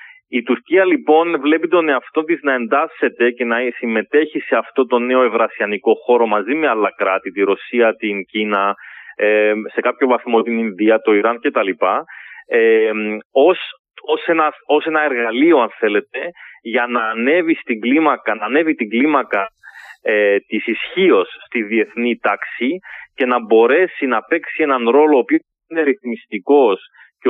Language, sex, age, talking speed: Greek, male, 30-49, 155 wpm